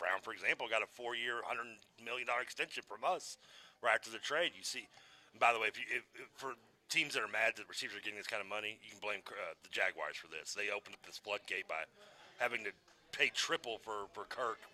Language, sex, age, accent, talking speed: English, male, 30-49, American, 240 wpm